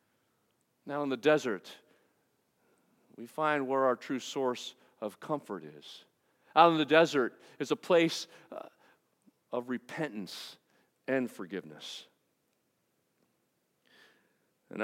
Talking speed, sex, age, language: 100 wpm, male, 50-69, English